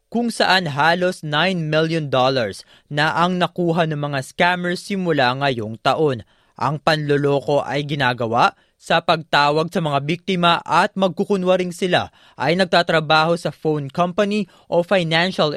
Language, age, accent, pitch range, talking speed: Filipino, 20-39, native, 140-175 Hz, 130 wpm